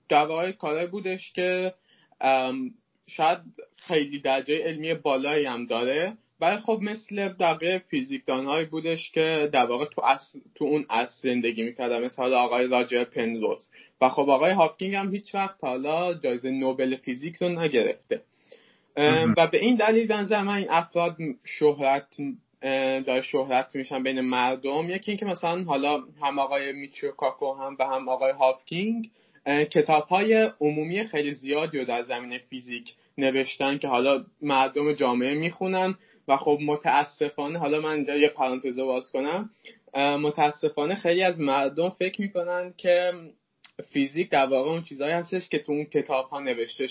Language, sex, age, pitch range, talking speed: Persian, male, 20-39, 135-180 Hz, 145 wpm